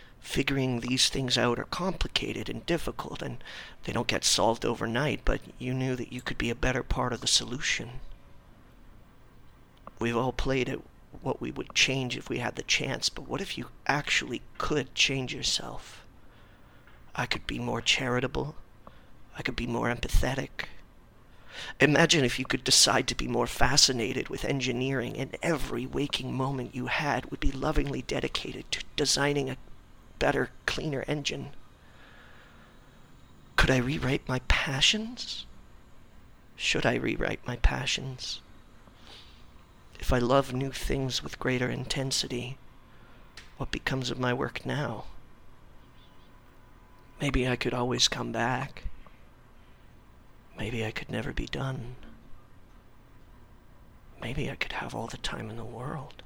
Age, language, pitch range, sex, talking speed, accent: 40-59, English, 120-135 Hz, male, 140 wpm, American